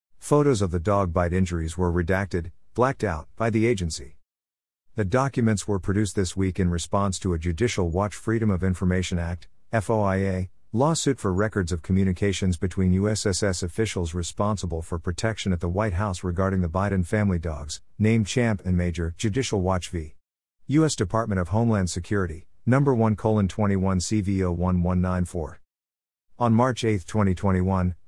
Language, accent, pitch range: English, American, 90-110 Hz